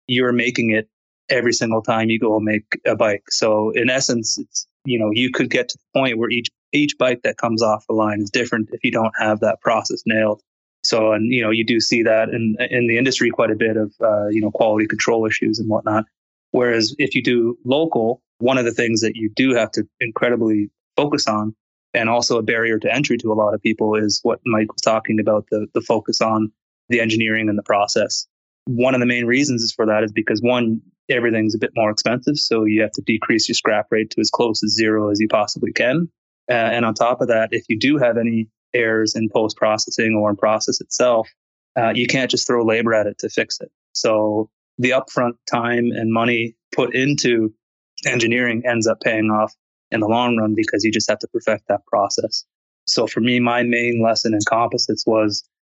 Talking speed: 220 wpm